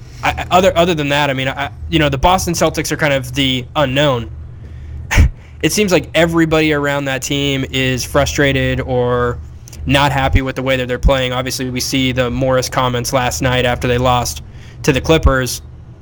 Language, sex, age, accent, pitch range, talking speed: English, male, 10-29, American, 130-145 Hz, 185 wpm